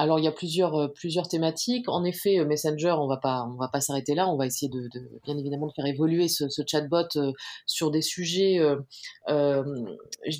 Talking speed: 210 wpm